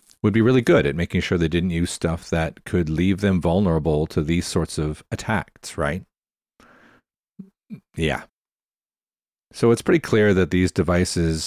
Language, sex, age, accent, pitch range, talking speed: English, male, 40-59, American, 85-105 Hz, 155 wpm